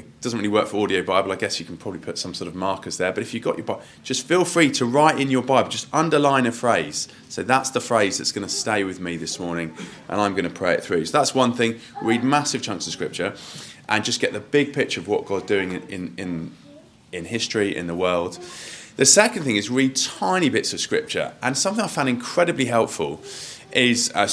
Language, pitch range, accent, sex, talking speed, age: English, 95-135 Hz, British, male, 240 wpm, 20-39